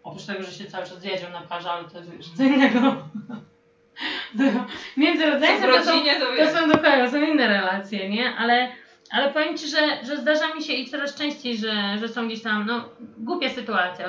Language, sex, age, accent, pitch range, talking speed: Polish, female, 30-49, native, 220-280 Hz, 190 wpm